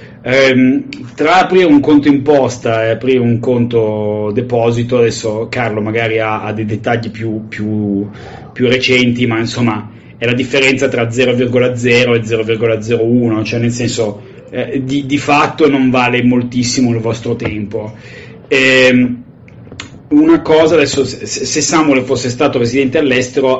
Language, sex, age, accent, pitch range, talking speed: Italian, male, 30-49, native, 115-145 Hz, 135 wpm